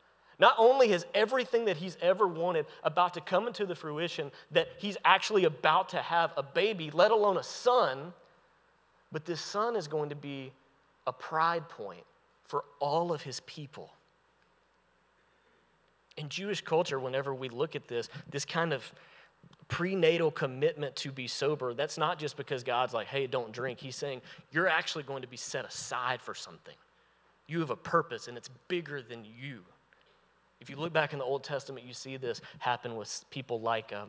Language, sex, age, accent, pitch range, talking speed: English, male, 30-49, American, 125-170 Hz, 180 wpm